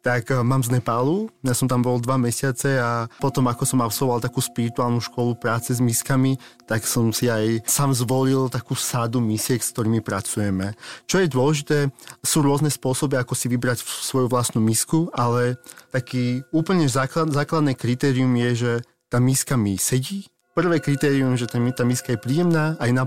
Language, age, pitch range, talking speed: Slovak, 30-49, 120-145 Hz, 170 wpm